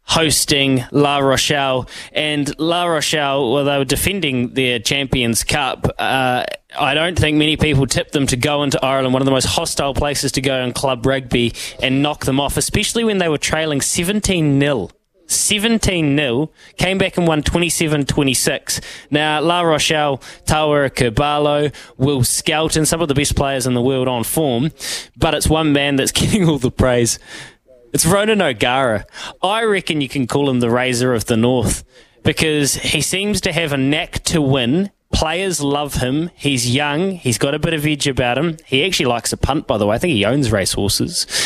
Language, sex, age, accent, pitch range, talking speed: English, male, 20-39, Australian, 125-155 Hz, 185 wpm